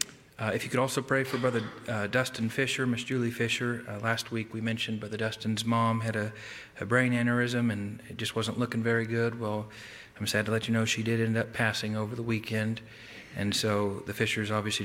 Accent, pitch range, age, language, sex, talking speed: American, 110-120 Hz, 40-59, English, male, 220 wpm